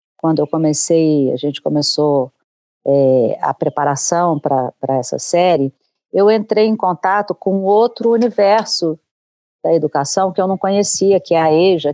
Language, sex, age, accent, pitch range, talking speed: Portuguese, female, 40-59, Brazilian, 145-175 Hz, 145 wpm